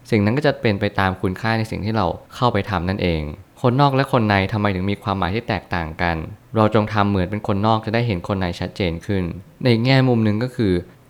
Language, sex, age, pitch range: Thai, male, 20-39, 95-115 Hz